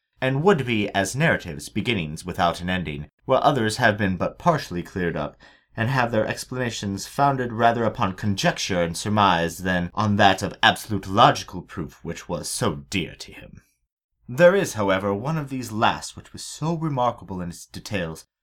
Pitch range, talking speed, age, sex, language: 90-120 Hz, 175 wpm, 30-49, male, English